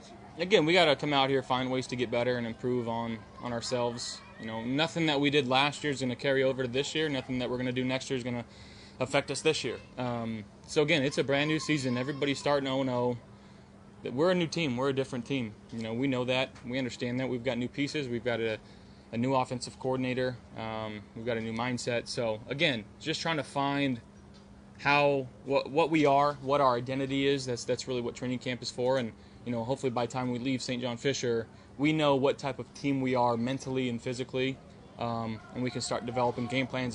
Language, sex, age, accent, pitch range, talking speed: English, male, 20-39, American, 120-135 Hz, 235 wpm